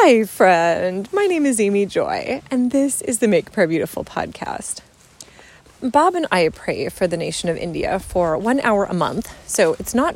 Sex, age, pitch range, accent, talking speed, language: female, 30-49, 190-265 Hz, American, 190 wpm, English